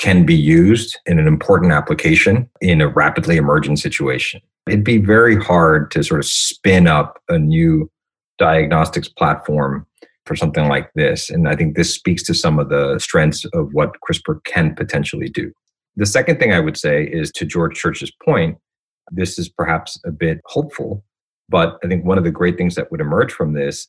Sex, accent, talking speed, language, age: male, American, 190 wpm, English, 40-59